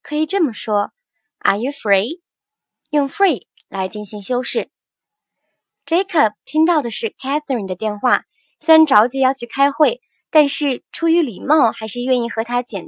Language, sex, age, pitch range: Chinese, male, 20-39, 225-300 Hz